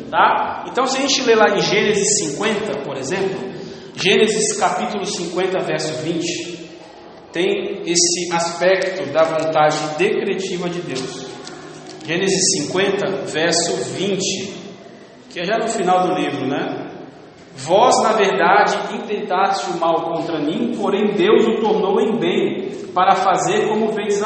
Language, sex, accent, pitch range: English, male, Brazilian, 180-220 Hz